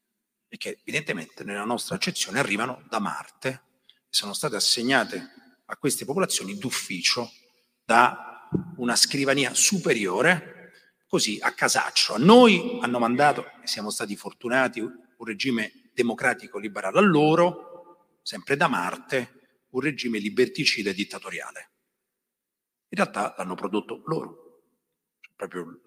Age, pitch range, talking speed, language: 40-59, 125-200 Hz, 120 wpm, Italian